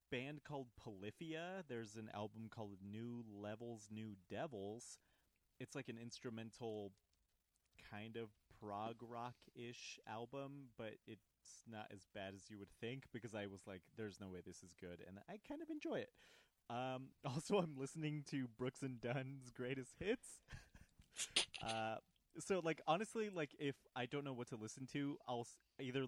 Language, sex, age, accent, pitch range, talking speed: English, male, 30-49, American, 100-130 Hz, 160 wpm